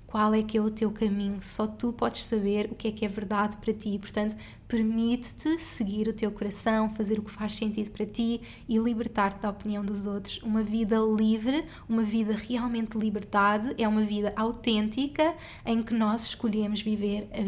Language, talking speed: Portuguese, 190 wpm